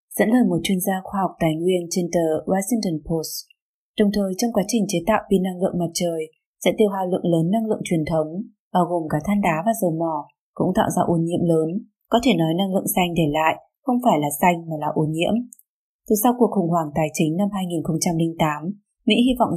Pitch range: 170-215 Hz